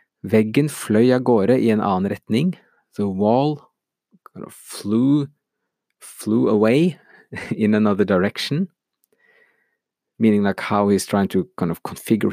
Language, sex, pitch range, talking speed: English, male, 100-130 Hz, 95 wpm